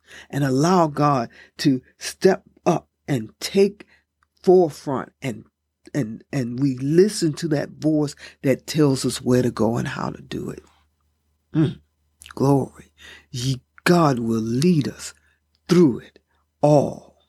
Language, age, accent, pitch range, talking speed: English, 50-69, American, 105-175 Hz, 130 wpm